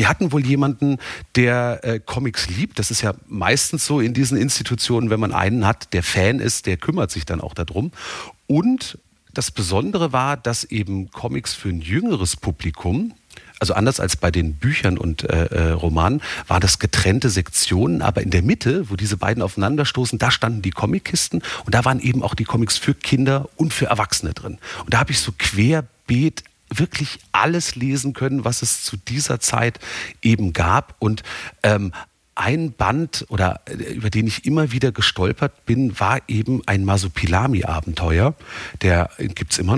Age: 40-59